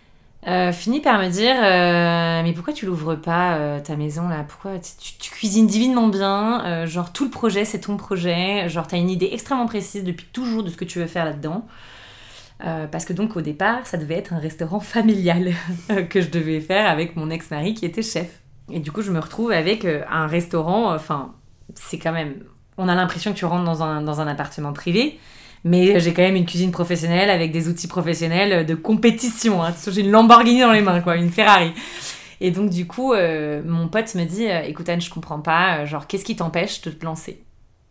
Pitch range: 160-195 Hz